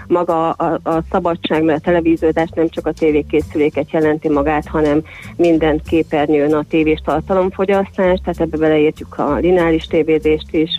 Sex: female